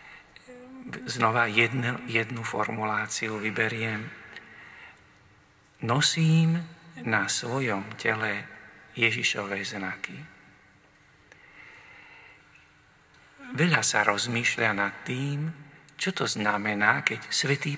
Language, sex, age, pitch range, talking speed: Slovak, male, 50-69, 115-145 Hz, 70 wpm